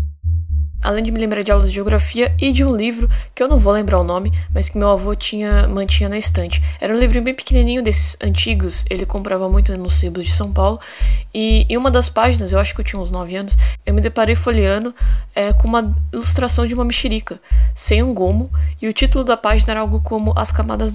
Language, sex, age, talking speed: Portuguese, female, 20-39, 220 wpm